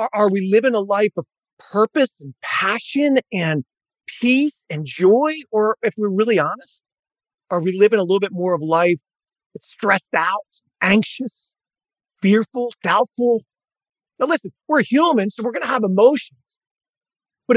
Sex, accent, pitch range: male, American, 180-245 Hz